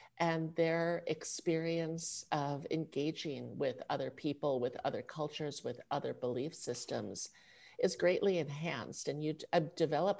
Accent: American